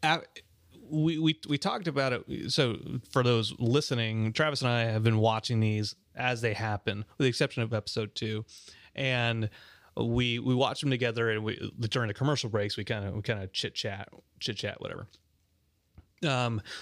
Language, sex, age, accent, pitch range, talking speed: English, male, 30-49, American, 110-130 Hz, 180 wpm